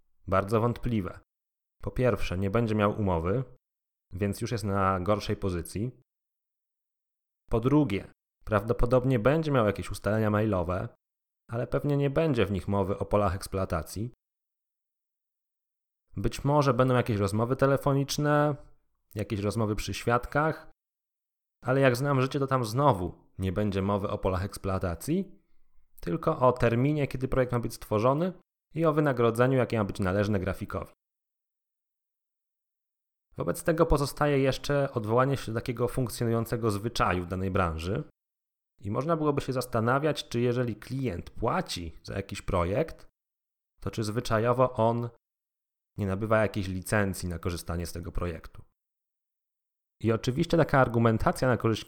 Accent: native